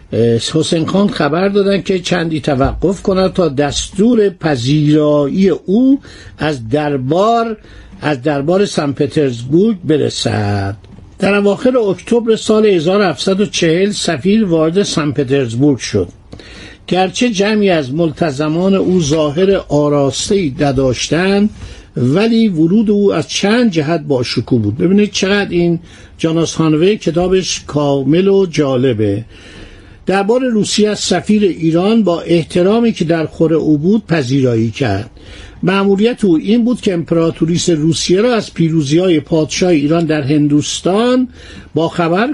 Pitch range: 145-195 Hz